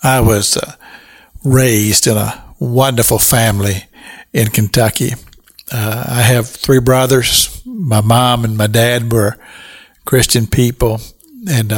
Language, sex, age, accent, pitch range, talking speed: English, male, 60-79, American, 120-150 Hz, 120 wpm